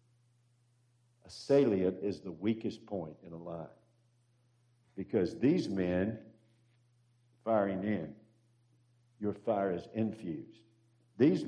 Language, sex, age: English, male, 60-79